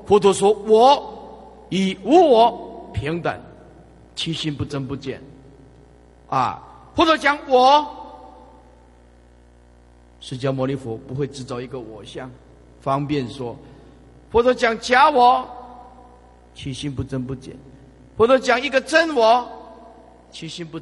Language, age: Chinese, 50-69